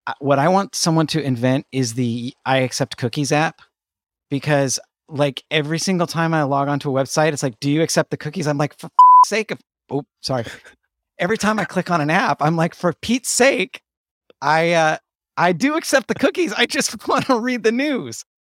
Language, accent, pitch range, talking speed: English, American, 130-175 Hz, 200 wpm